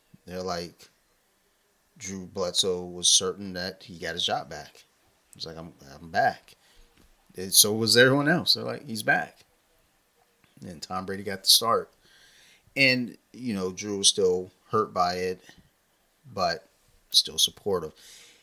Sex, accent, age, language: male, American, 30-49, English